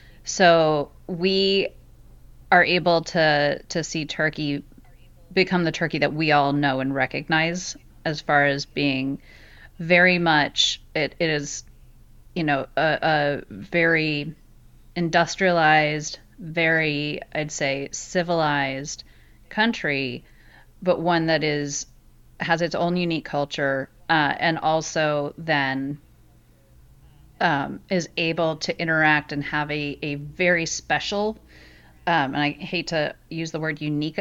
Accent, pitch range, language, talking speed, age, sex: American, 140-165 Hz, English, 125 wpm, 30-49, female